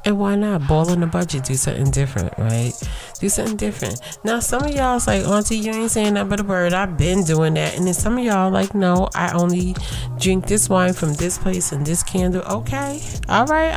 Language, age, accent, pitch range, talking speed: English, 30-49, American, 130-200 Hz, 230 wpm